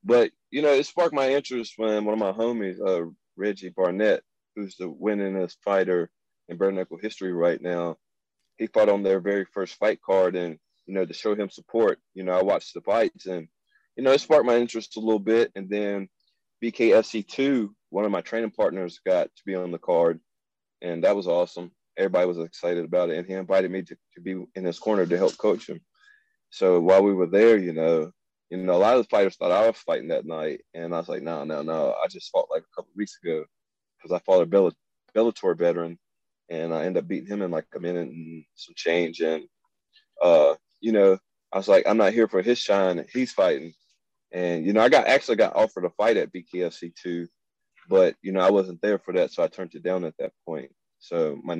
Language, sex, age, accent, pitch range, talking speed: English, male, 20-39, American, 85-115 Hz, 225 wpm